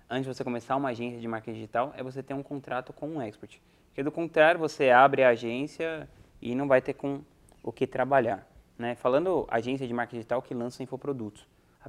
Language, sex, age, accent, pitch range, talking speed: Portuguese, male, 20-39, Brazilian, 115-140 Hz, 215 wpm